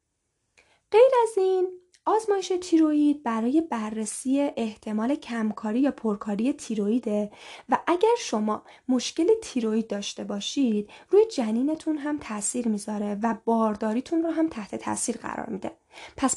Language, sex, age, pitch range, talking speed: Persian, female, 10-29, 220-320 Hz, 120 wpm